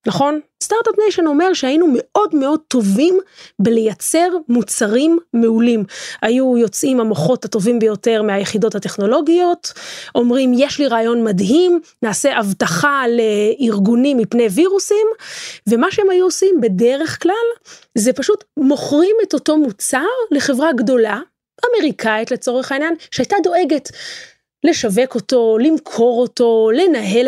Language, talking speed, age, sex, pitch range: Hebrew, 115 wpm, 20-39, female, 225-330 Hz